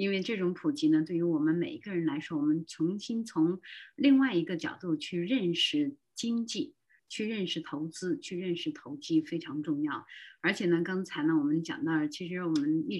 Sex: female